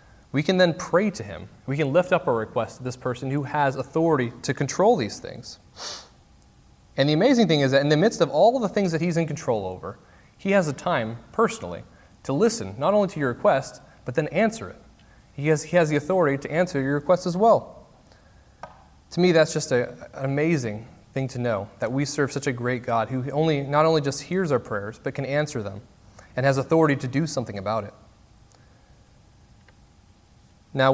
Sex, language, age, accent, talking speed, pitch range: male, English, 30-49, American, 210 wpm, 120-165 Hz